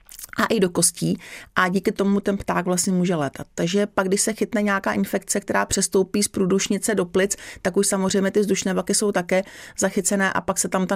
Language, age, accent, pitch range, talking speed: Czech, 40-59, native, 190-215 Hz, 215 wpm